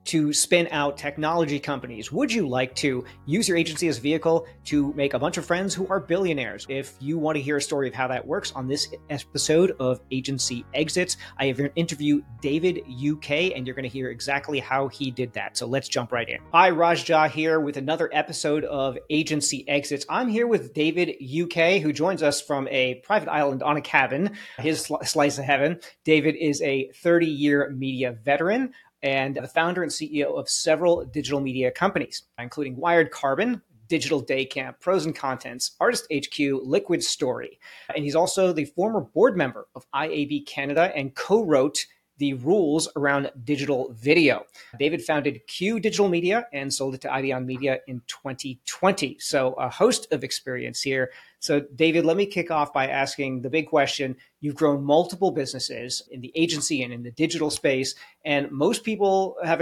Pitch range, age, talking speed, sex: 135-165 Hz, 40-59, 180 wpm, male